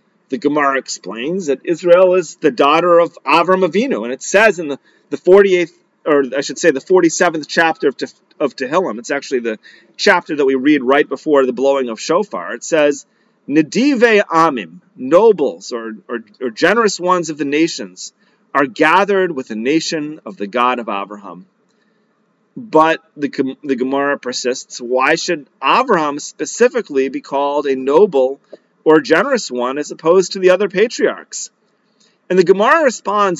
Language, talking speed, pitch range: English, 170 wpm, 135-195 Hz